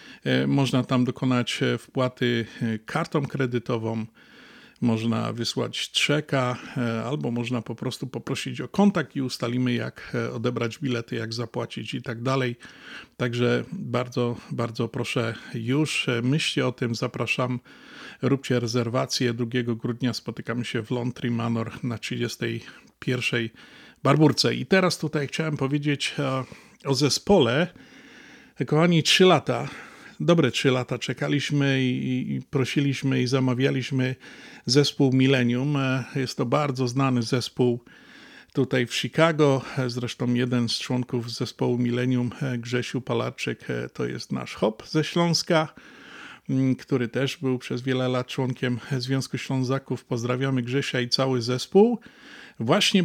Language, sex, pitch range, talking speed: Polish, male, 120-140 Hz, 120 wpm